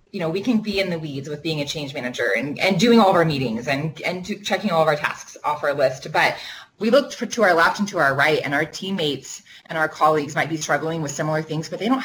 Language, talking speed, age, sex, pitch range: English, 285 wpm, 20-39, female, 145-195 Hz